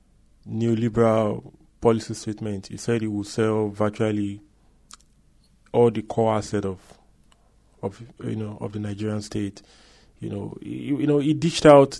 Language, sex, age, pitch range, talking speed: English, male, 20-39, 105-125 Hz, 145 wpm